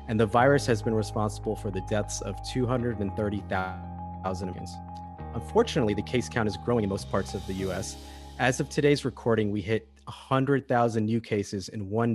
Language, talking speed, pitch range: English, 170 wpm, 100-125 Hz